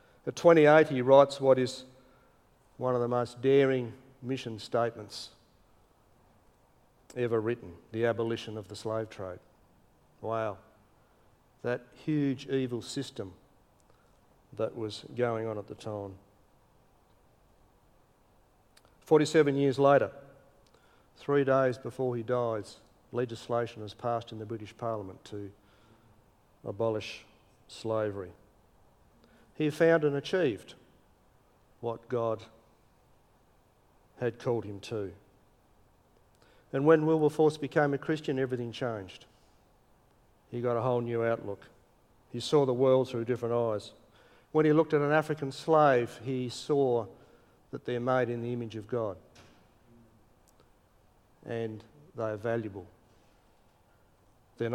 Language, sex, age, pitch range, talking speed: English, male, 50-69, 110-130 Hz, 115 wpm